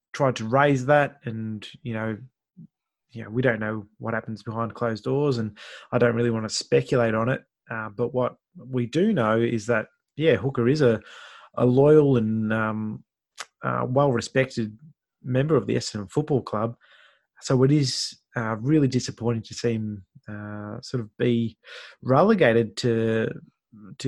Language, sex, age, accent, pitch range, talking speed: English, male, 20-39, Australian, 115-135 Hz, 165 wpm